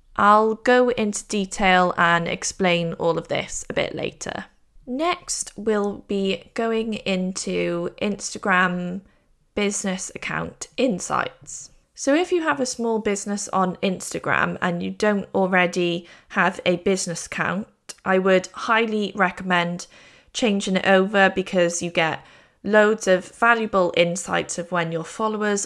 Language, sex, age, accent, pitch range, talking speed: English, female, 20-39, British, 180-215 Hz, 130 wpm